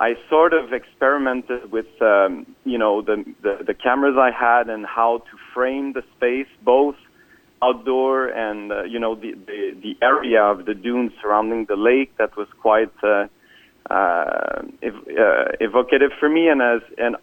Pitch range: 115-140 Hz